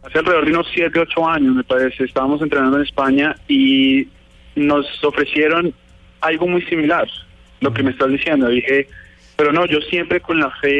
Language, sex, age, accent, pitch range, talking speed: Spanish, male, 20-39, Colombian, 130-145 Hz, 185 wpm